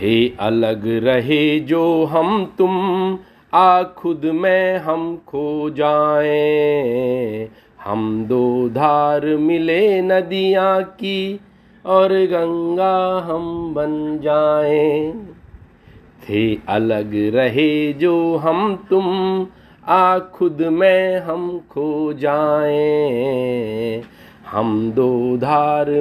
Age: 50-69